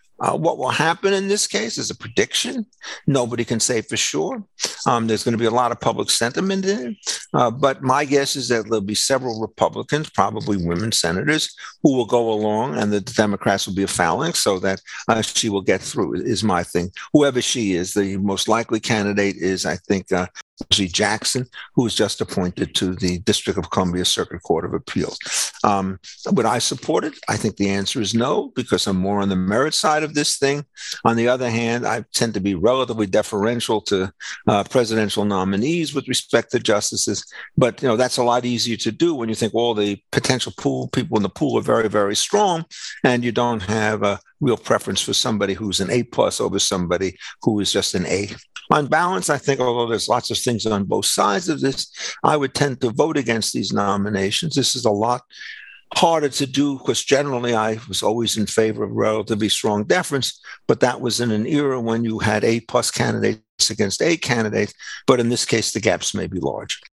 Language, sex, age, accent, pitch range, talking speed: English, male, 50-69, American, 100-130 Hz, 210 wpm